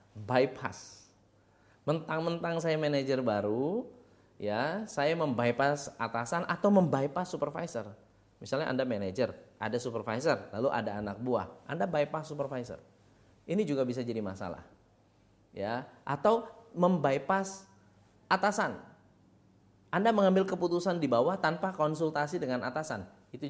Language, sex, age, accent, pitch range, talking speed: Indonesian, male, 20-39, native, 110-170 Hz, 110 wpm